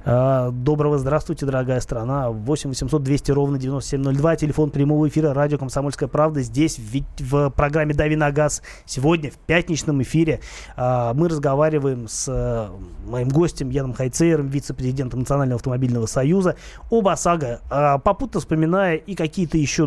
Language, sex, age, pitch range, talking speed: Russian, male, 20-39, 125-155 Hz, 130 wpm